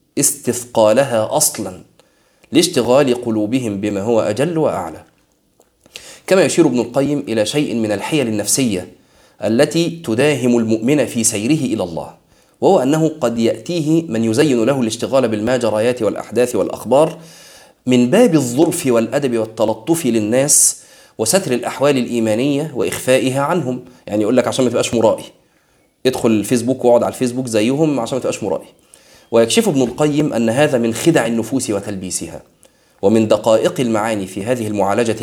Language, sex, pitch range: Arabic, male, 110-145 Hz